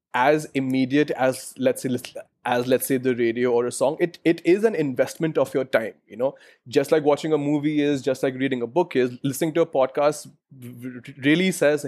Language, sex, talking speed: English, male, 205 wpm